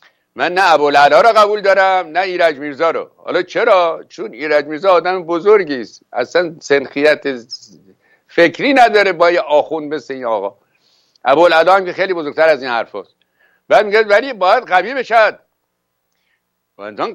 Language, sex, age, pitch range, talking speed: Persian, male, 60-79, 115-190 Hz, 145 wpm